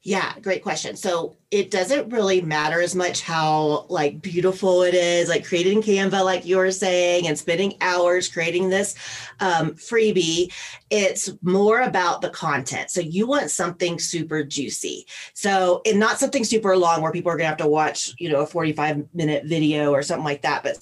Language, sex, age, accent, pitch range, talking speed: English, female, 30-49, American, 160-195 Hz, 185 wpm